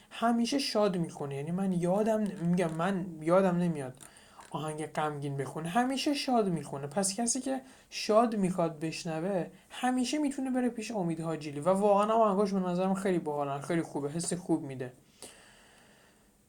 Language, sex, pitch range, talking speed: Persian, male, 150-195 Hz, 150 wpm